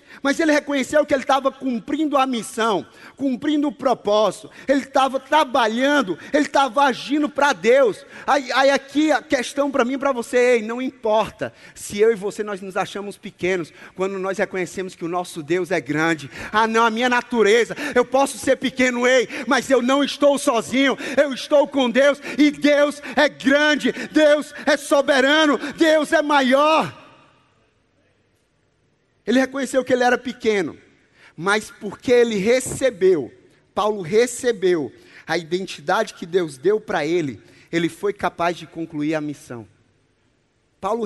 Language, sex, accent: Portuguese, male, Brazilian